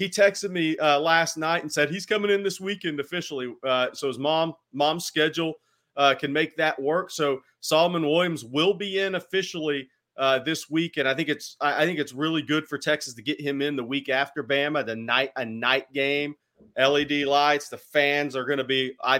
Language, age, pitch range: English, 40-59, 130-155 Hz